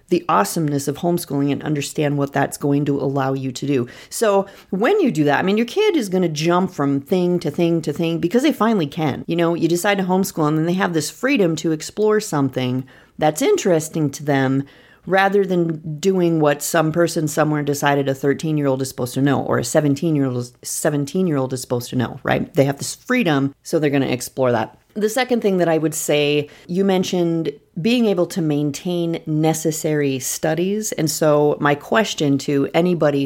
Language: English